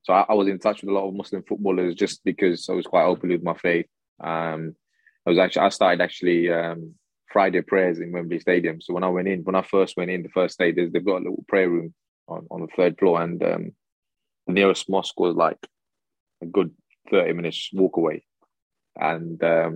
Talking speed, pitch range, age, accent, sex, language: 220 wpm, 85-90 Hz, 20-39, British, male, English